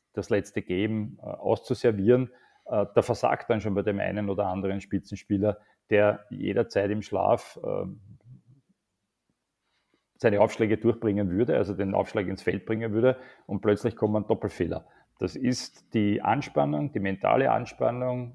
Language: German